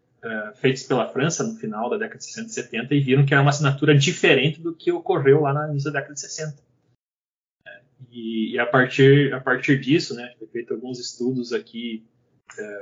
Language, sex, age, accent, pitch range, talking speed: Portuguese, male, 20-39, Brazilian, 125-155 Hz, 185 wpm